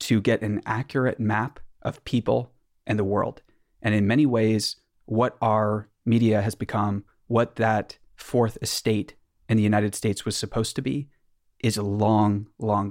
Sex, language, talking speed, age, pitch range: male, English, 165 wpm, 30-49, 105-115 Hz